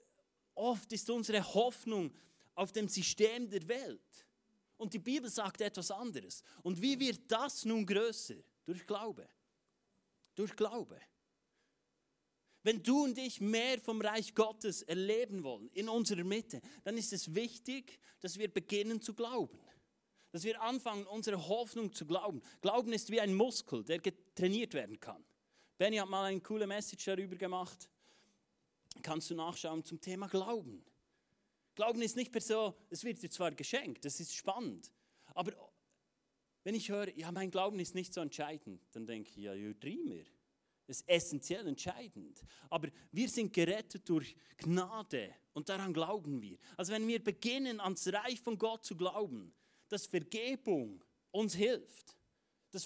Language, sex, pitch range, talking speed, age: German, male, 180-225 Hz, 155 wpm, 30-49